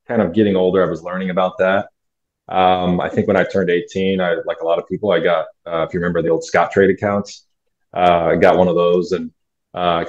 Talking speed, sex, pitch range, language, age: 245 wpm, male, 90-110 Hz, English, 30-49